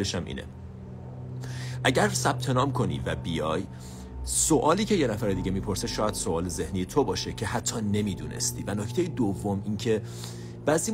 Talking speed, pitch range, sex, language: 145 wpm, 95-120 Hz, male, Persian